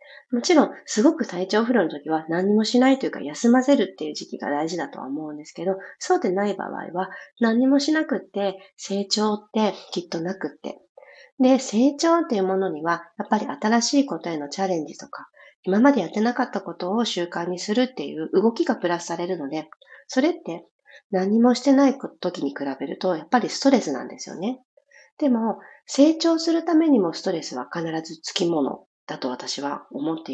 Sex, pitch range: female, 175-255 Hz